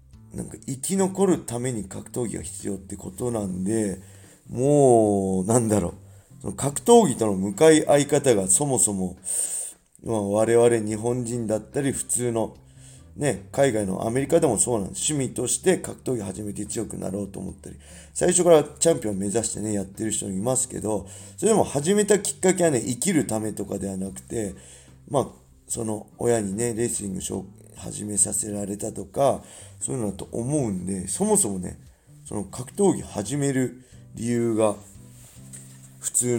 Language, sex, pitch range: Japanese, male, 100-125 Hz